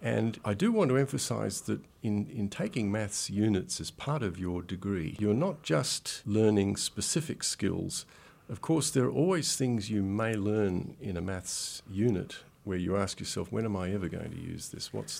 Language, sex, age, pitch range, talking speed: English, male, 50-69, 90-115 Hz, 195 wpm